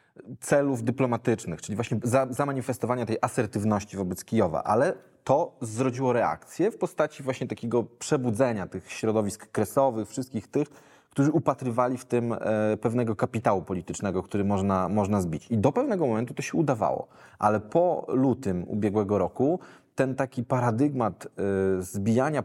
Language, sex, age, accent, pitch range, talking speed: Polish, male, 20-39, native, 100-130 Hz, 135 wpm